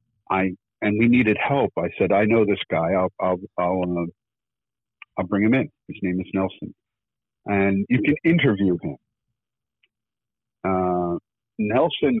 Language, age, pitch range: English, 50-69, 90-115 Hz